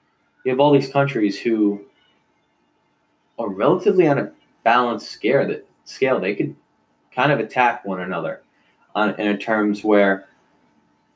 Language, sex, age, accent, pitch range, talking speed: English, male, 20-39, American, 100-125 Hz, 120 wpm